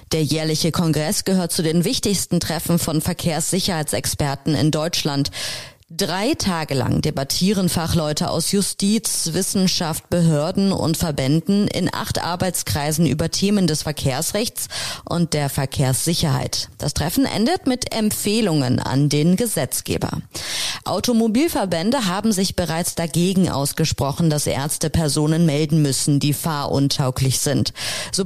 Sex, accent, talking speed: female, German, 120 wpm